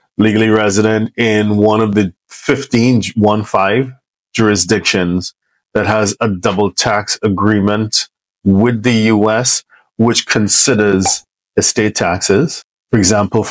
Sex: male